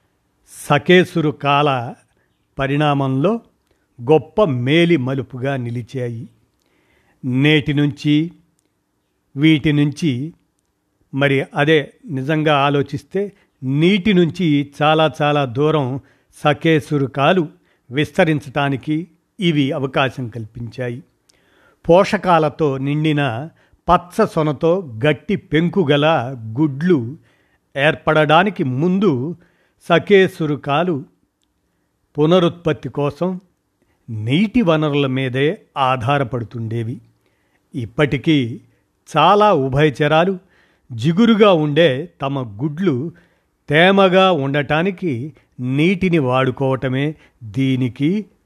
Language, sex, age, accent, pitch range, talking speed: Telugu, male, 50-69, native, 135-170 Hz, 65 wpm